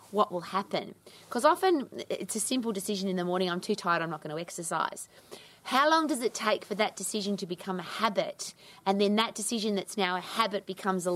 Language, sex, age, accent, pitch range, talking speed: English, female, 30-49, Australian, 180-215 Hz, 225 wpm